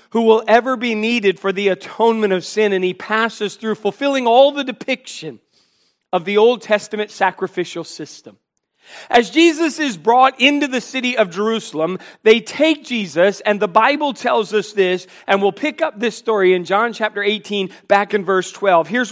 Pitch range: 185-235 Hz